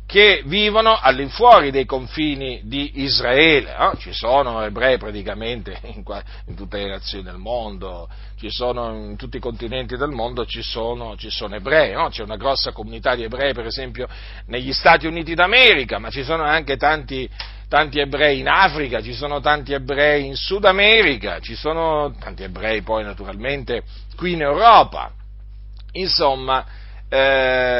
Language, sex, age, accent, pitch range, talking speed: Italian, male, 40-59, native, 105-160 Hz, 145 wpm